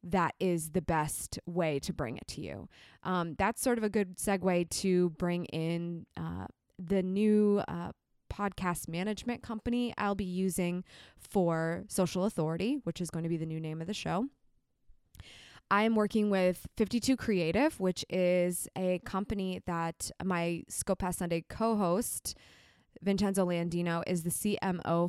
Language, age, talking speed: English, 20-39, 155 wpm